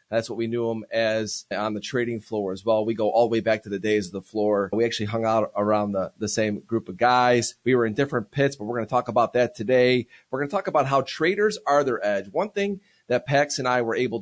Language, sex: English, male